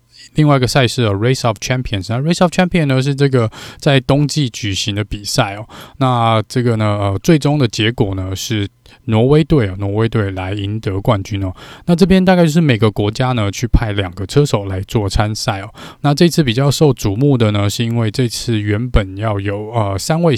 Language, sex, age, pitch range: Chinese, male, 20-39, 105-135 Hz